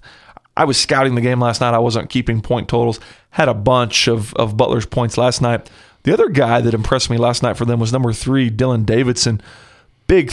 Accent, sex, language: American, male, English